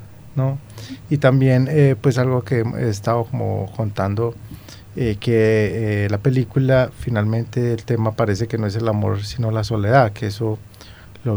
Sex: male